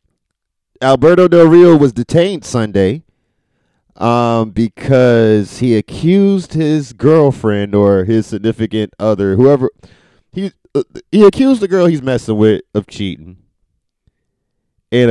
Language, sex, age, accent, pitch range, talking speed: English, male, 30-49, American, 105-140 Hz, 115 wpm